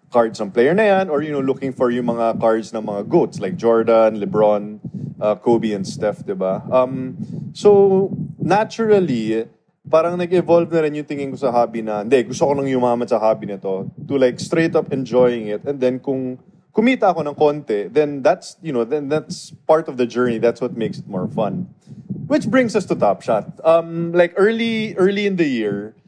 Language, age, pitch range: Filipino, 20-39, 115-180 Hz